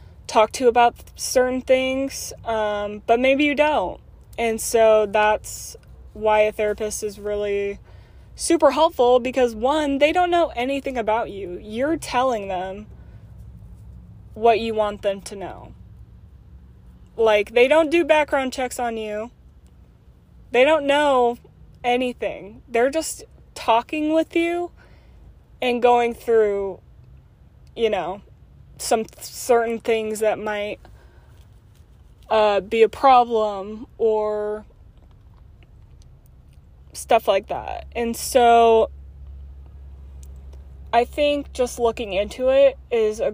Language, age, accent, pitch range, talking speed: English, 20-39, American, 205-255 Hz, 115 wpm